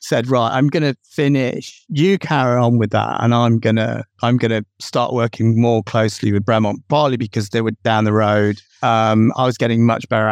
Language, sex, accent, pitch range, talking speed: English, male, British, 110-130 Hz, 215 wpm